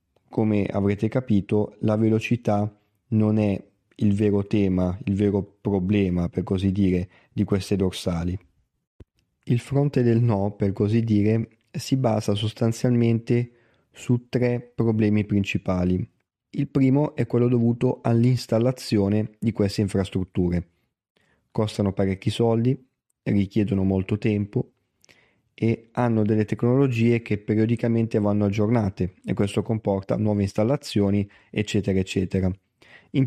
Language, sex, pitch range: Italian, male, 100-115 Hz